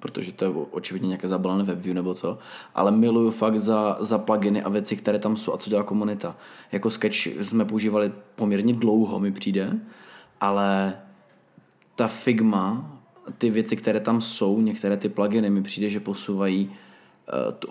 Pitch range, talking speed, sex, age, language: 105-115 Hz, 170 wpm, male, 20-39, Czech